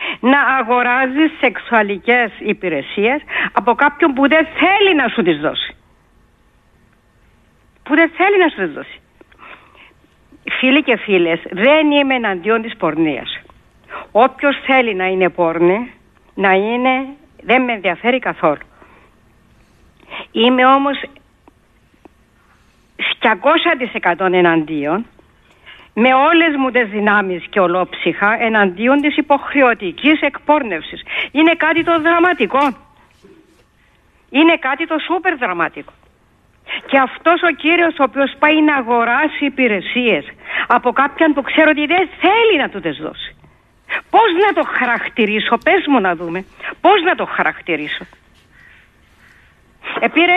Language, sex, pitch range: Greek, female, 220-320 Hz